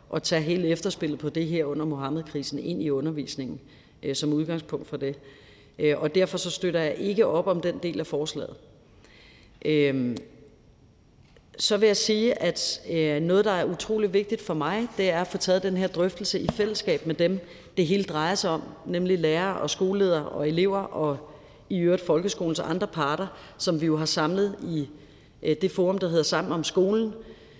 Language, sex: Danish, female